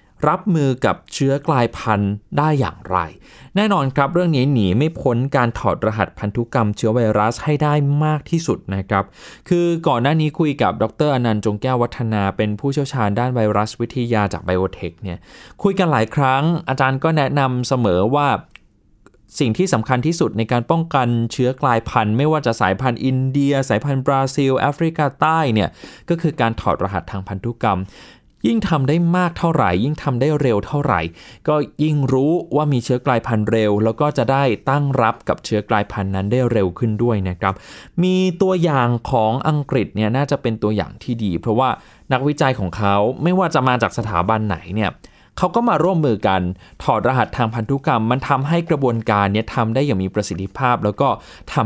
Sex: male